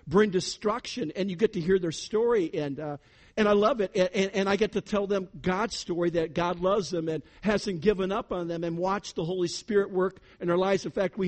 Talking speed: 250 wpm